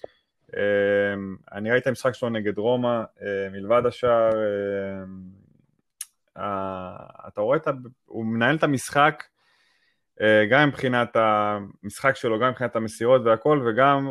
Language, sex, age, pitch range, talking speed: Hebrew, male, 20-39, 110-140 Hz, 55 wpm